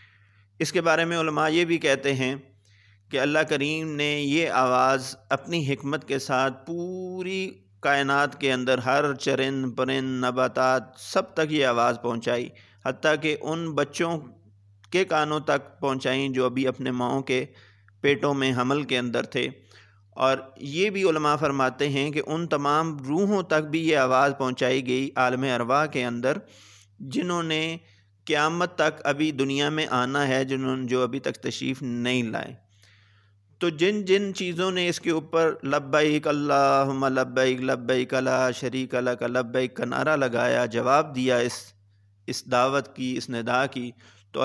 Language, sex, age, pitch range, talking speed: Urdu, male, 50-69, 125-150 Hz, 155 wpm